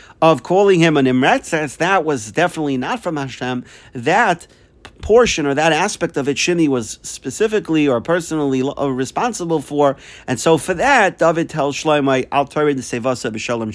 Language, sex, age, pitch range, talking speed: English, male, 40-59, 130-165 Hz, 170 wpm